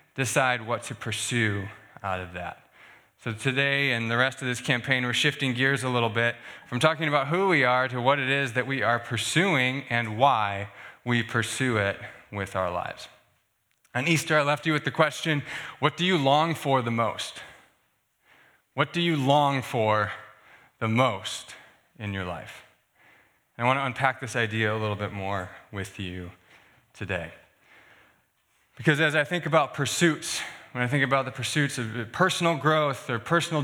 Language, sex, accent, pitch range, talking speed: English, male, American, 120-160 Hz, 175 wpm